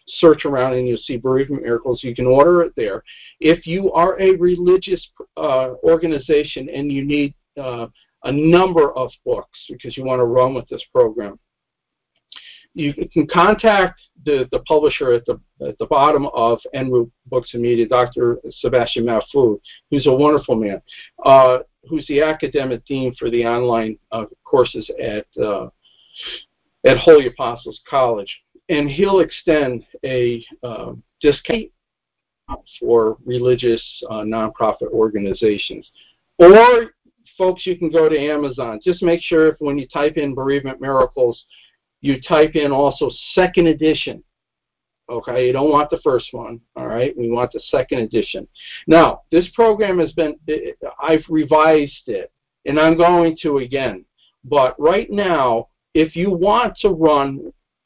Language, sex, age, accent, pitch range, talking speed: English, male, 50-69, American, 130-190 Hz, 145 wpm